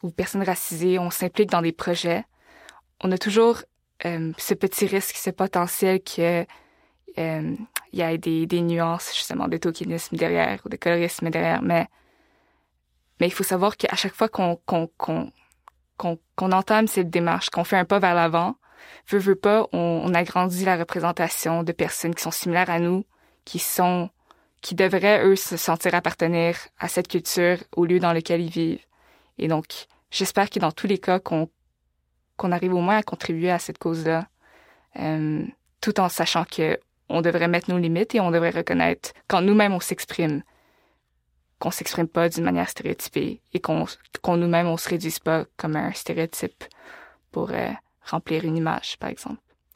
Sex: female